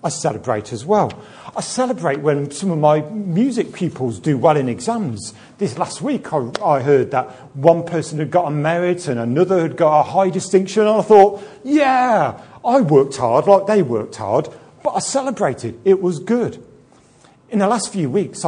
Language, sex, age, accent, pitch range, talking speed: English, male, 40-59, British, 140-210 Hz, 190 wpm